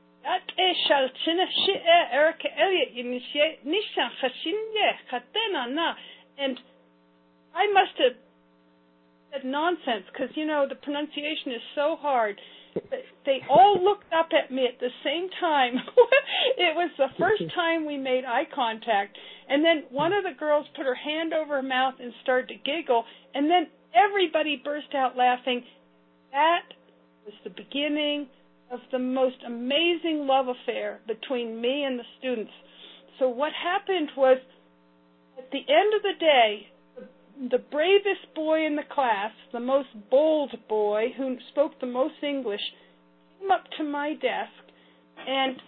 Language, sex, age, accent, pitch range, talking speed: English, female, 50-69, American, 240-310 Hz, 135 wpm